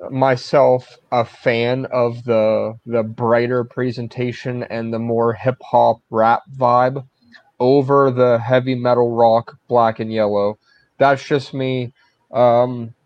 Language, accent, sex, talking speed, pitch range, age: English, American, male, 125 wpm, 115-130 Hz, 30-49